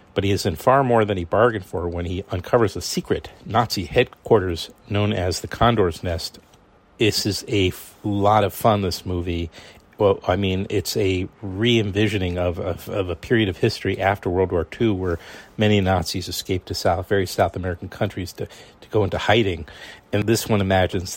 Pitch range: 90-110 Hz